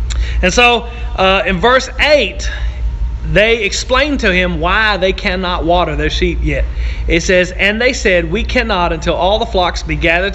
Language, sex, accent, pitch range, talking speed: English, male, American, 170-220 Hz, 175 wpm